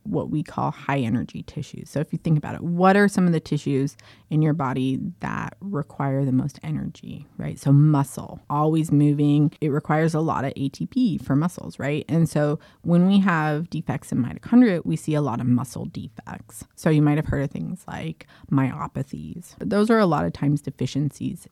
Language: English